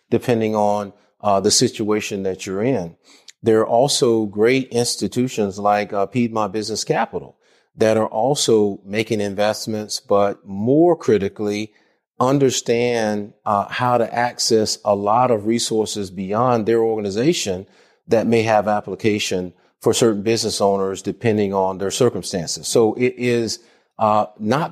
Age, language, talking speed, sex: 40-59, English, 135 wpm, male